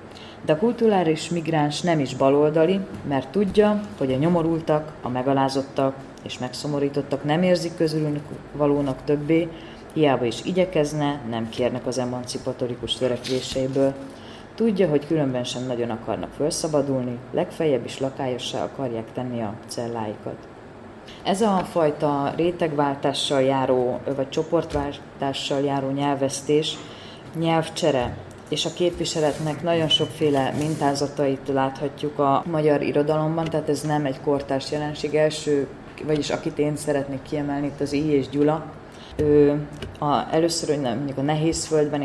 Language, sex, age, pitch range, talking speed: Hungarian, female, 20-39, 135-155 Hz, 125 wpm